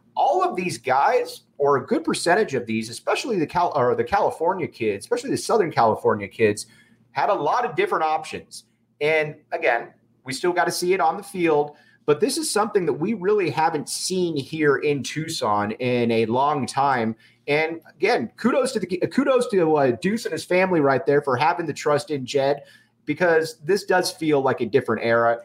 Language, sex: English, male